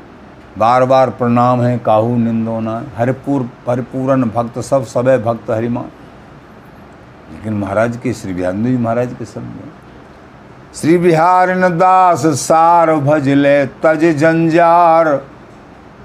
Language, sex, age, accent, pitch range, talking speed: Hindi, male, 50-69, native, 115-155 Hz, 110 wpm